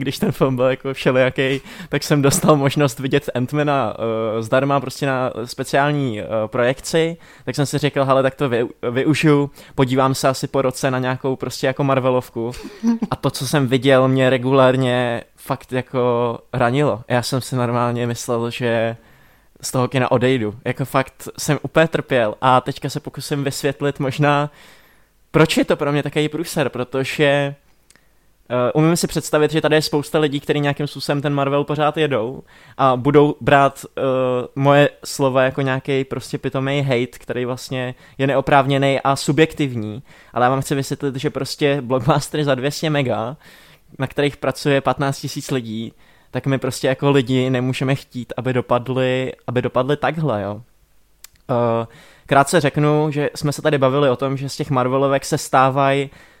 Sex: male